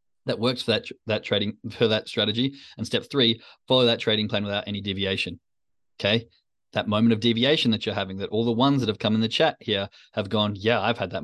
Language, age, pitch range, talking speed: English, 20-39, 105-125 Hz, 235 wpm